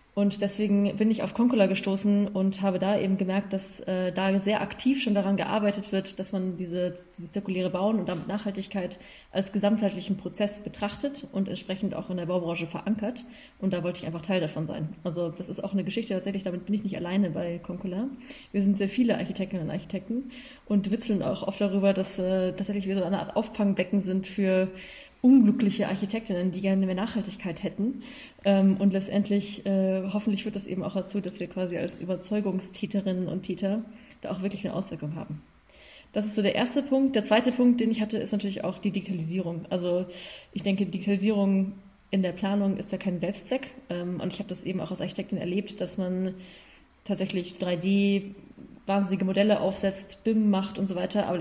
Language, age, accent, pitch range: German, 20-39, German, 185-205 Hz